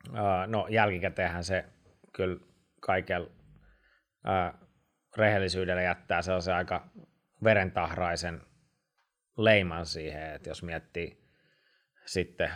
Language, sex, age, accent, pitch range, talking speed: Finnish, male, 20-39, native, 85-95 Hz, 70 wpm